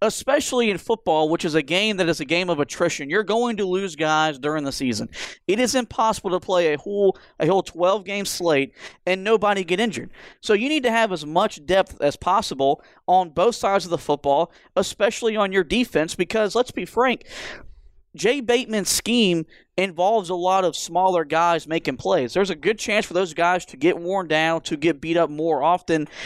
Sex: male